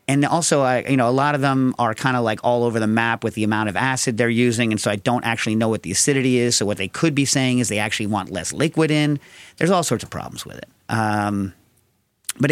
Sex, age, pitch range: male, 40-59, 110-140 Hz